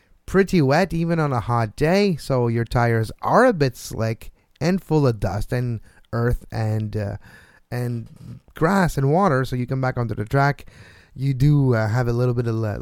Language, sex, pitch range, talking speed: English, male, 115-155 Hz, 190 wpm